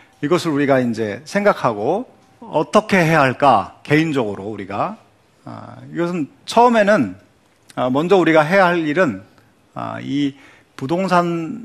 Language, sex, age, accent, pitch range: Korean, male, 40-59, native, 130-195 Hz